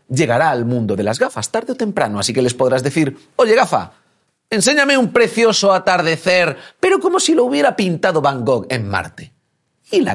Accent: Spanish